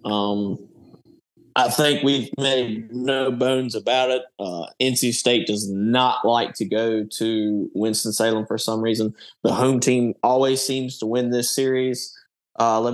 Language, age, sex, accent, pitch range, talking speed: English, 20-39, male, American, 105-125 Hz, 155 wpm